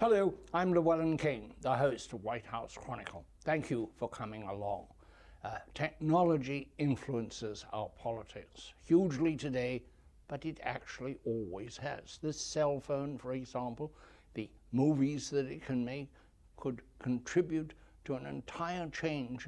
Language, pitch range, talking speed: English, 105-140 Hz, 135 wpm